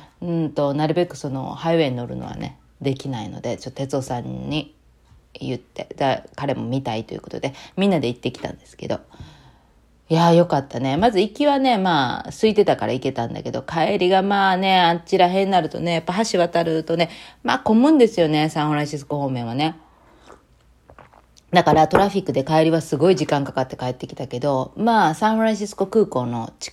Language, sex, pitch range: Japanese, female, 130-175 Hz